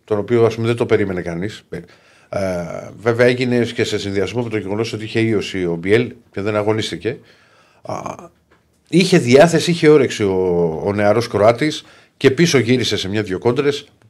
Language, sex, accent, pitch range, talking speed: Greek, male, native, 100-125 Hz, 165 wpm